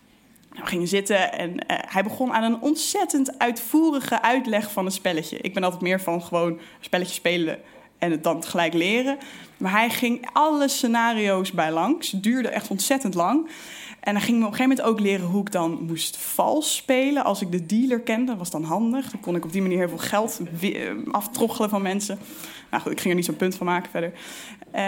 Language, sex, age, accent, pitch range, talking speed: Dutch, female, 20-39, Dutch, 185-250 Hz, 215 wpm